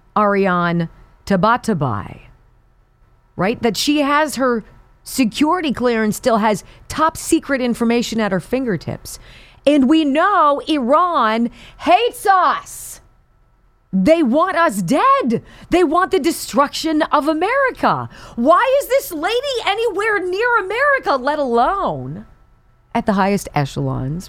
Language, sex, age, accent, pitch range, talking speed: English, female, 40-59, American, 170-275 Hz, 115 wpm